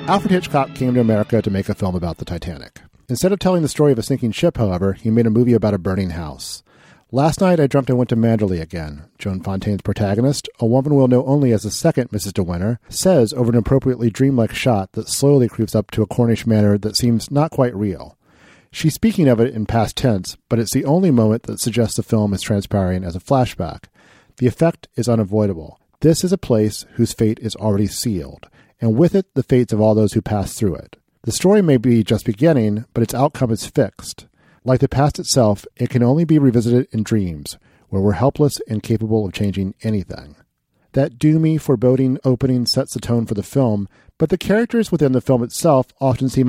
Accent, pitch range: American, 105-135 Hz